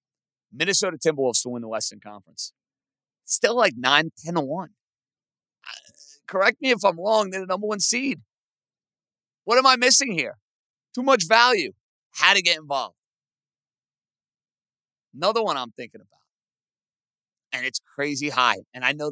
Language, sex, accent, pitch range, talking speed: English, male, American, 140-200 Hz, 140 wpm